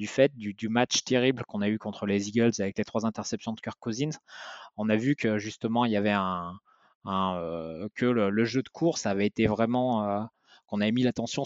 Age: 20-39